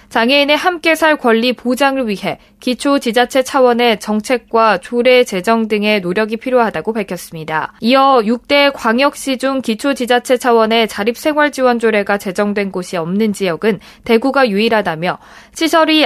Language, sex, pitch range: Korean, female, 210-260 Hz